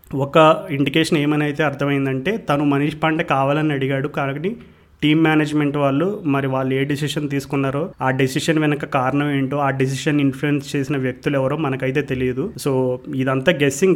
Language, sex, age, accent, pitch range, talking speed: Telugu, male, 30-49, native, 135-160 Hz, 150 wpm